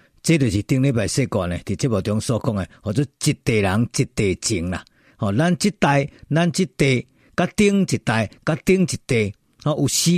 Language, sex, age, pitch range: Chinese, male, 50-69, 110-170 Hz